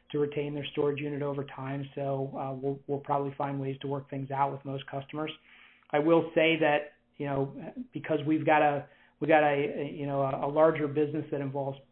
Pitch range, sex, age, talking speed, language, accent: 135-155 Hz, male, 40-59, 215 wpm, English, American